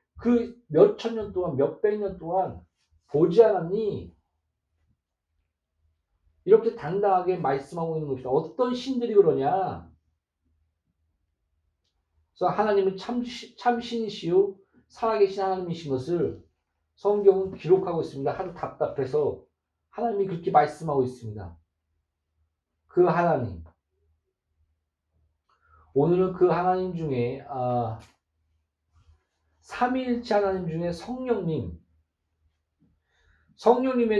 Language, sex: Korean, male